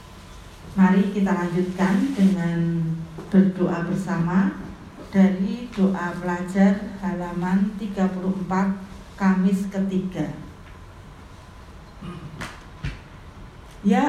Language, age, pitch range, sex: Indonesian, 40-59, 180-205 Hz, female